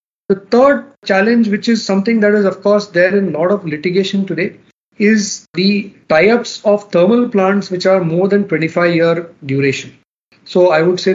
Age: 40-59